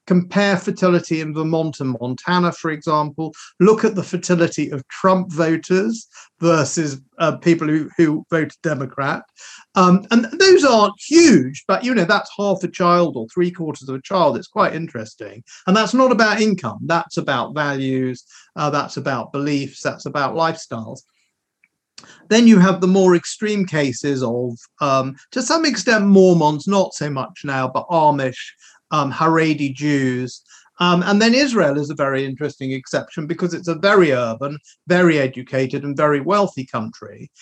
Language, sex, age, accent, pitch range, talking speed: English, male, 50-69, British, 145-200 Hz, 160 wpm